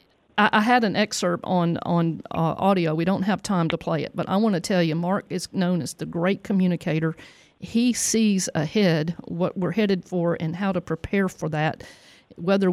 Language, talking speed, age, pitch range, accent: English, 200 wpm, 50-69, 170-200 Hz, American